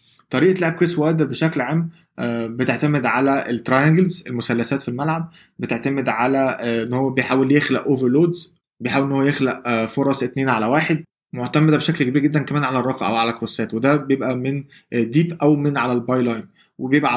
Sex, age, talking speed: male, 20-39, 165 wpm